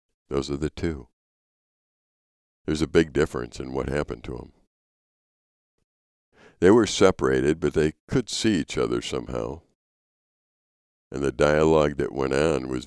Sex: male